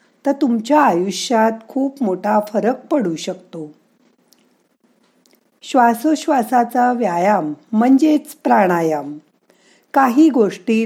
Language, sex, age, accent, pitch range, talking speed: Marathi, female, 50-69, native, 185-260 Hz, 75 wpm